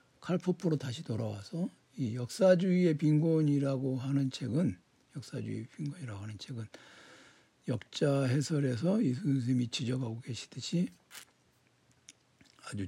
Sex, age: male, 60-79